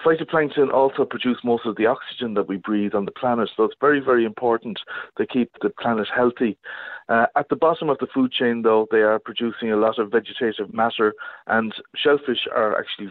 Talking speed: 200 wpm